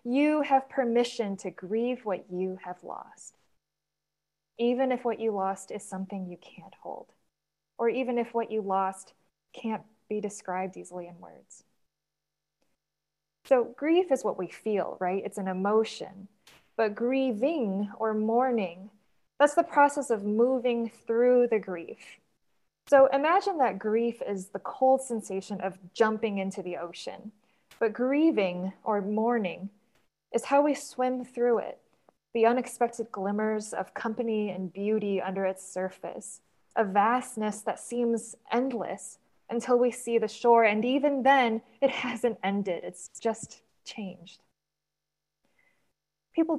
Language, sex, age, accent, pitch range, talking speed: English, female, 20-39, American, 195-245 Hz, 135 wpm